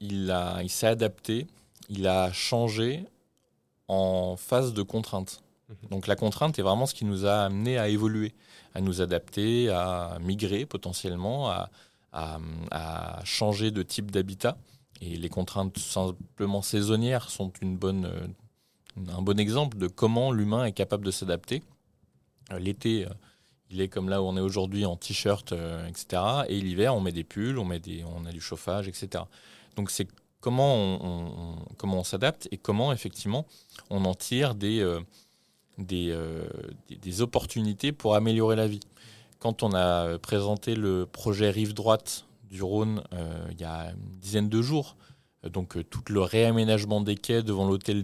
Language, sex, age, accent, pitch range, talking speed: French, male, 20-39, French, 90-110 Hz, 160 wpm